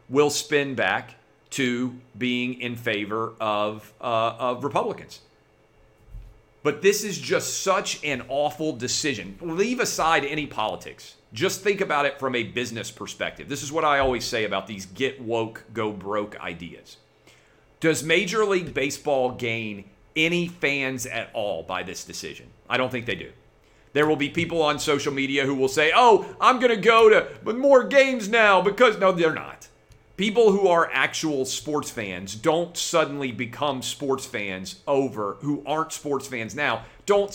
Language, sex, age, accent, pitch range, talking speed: English, male, 40-59, American, 120-165 Hz, 165 wpm